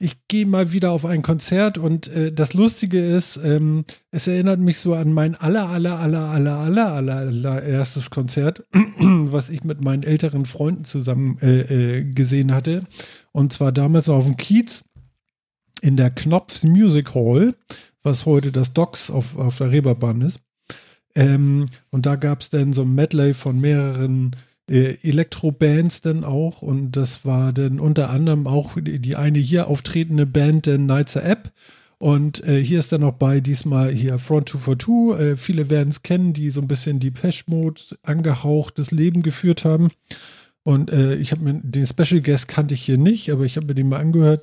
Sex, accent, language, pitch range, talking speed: male, German, German, 135-160 Hz, 180 wpm